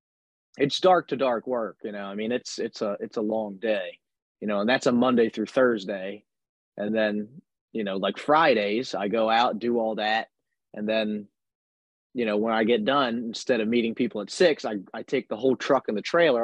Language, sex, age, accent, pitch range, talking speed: English, male, 30-49, American, 105-120 Hz, 220 wpm